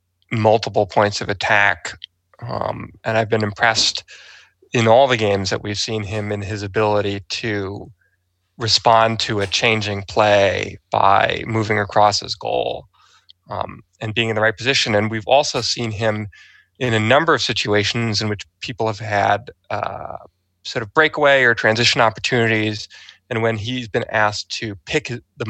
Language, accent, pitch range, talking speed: English, American, 105-125 Hz, 160 wpm